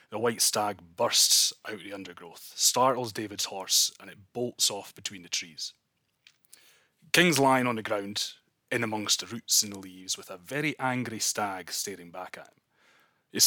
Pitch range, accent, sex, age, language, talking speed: 105-125 Hz, British, male, 30-49, English, 180 wpm